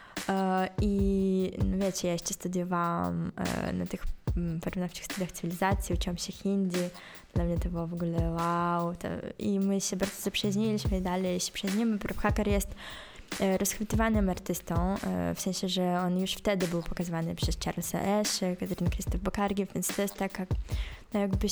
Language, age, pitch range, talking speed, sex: Polish, 20-39, 180-210 Hz, 145 wpm, female